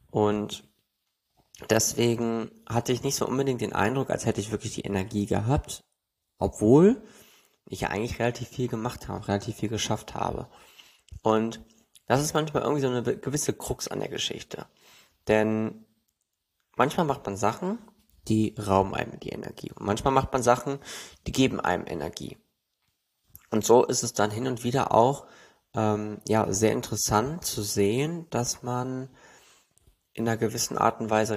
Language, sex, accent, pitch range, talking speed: German, male, German, 105-130 Hz, 155 wpm